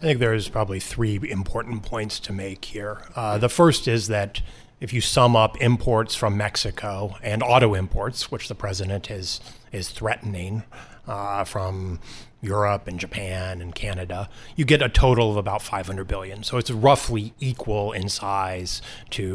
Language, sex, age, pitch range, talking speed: English, male, 30-49, 100-120 Hz, 165 wpm